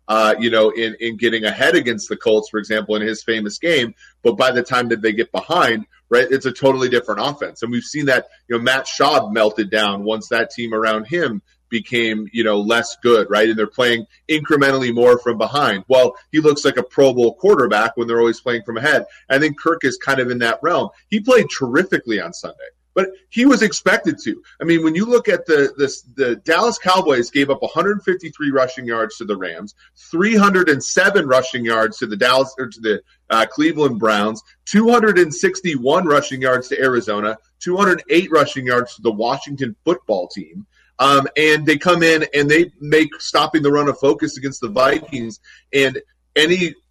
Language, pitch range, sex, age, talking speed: English, 115-160 Hz, male, 30-49, 195 wpm